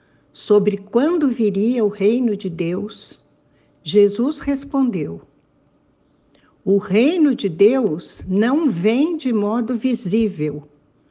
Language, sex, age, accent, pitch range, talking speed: Portuguese, female, 60-79, Brazilian, 165-220 Hz, 95 wpm